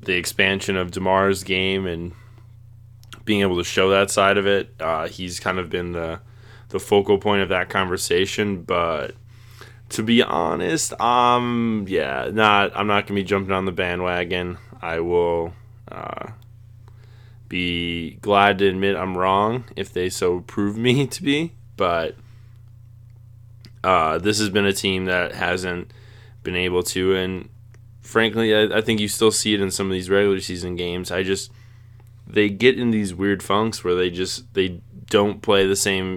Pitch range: 95-115 Hz